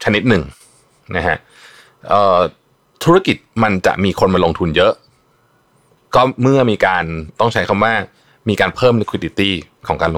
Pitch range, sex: 85-120 Hz, male